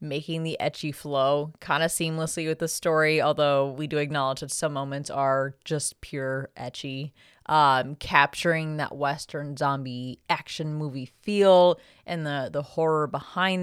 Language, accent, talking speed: English, American, 150 wpm